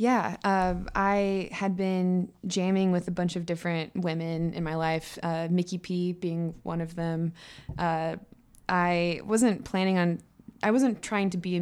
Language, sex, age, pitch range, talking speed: English, female, 20-39, 160-180 Hz, 170 wpm